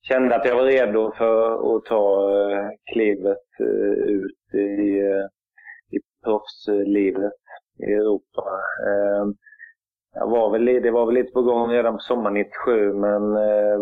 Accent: native